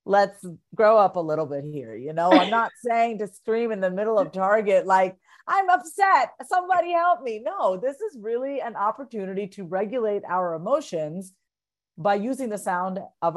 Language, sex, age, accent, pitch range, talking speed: English, female, 40-59, American, 180-250 Hz, 180 wpm